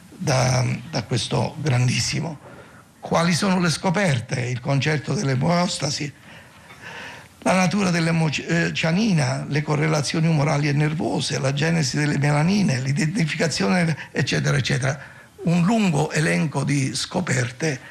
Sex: male